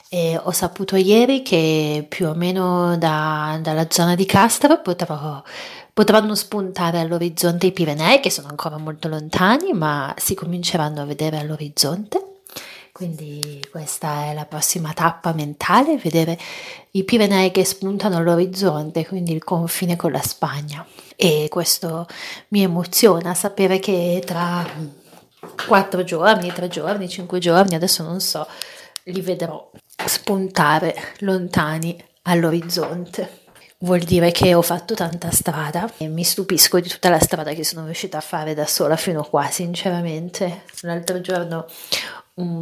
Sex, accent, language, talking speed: female, native, Italian, 135 wpm